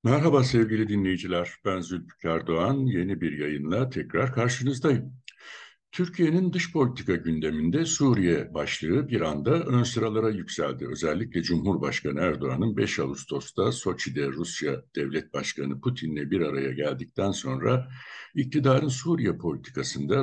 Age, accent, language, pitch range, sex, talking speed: 60-79, native, Turkish, 80-125 Hz, male, 115 wpm